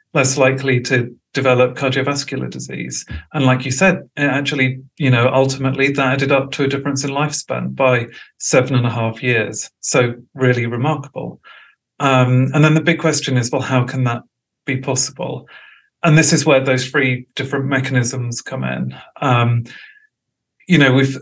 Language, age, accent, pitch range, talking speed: English, 40-59, British, 125-145 Hz, 165 wpm